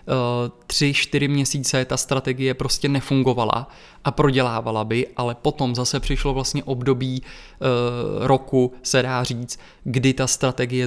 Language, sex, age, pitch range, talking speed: Czech, male, 20-39, 120-130 Hz, 125 wpm